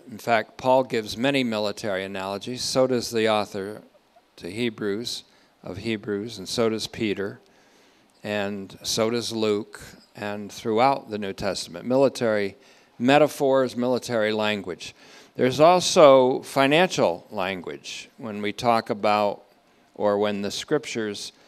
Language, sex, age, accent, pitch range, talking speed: English, male, 50-69, American, 105-130 Hz, 125 wpm